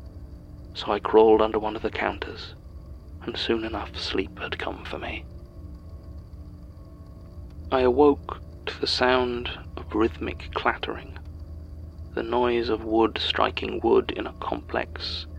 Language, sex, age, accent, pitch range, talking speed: English, male, 40-59, British, 85-115 Hz, 130 wpm